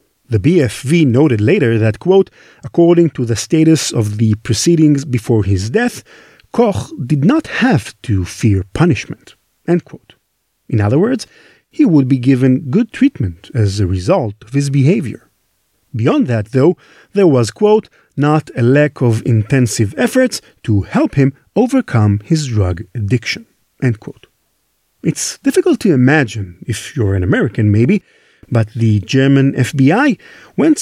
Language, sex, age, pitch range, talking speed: English, male, 50-69, 115-170 Hz, 145 wpm